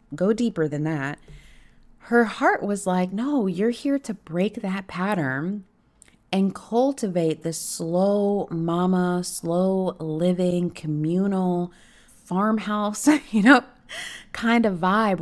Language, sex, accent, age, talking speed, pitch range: English, female, American, 30-49, 115 wpm, 145-190 Hz